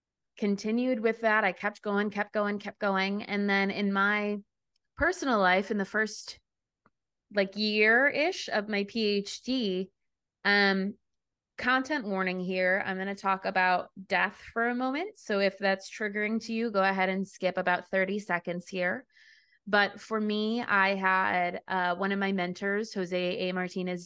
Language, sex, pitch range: English, female, 185-210 Hz